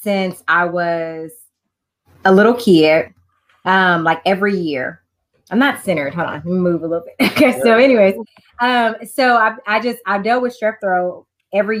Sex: female